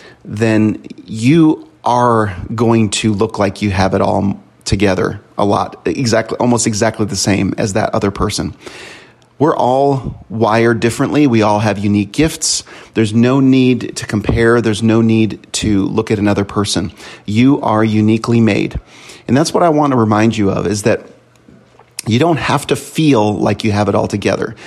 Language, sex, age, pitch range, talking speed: English, male, 30-49, 105-120 Hz, 175 wpm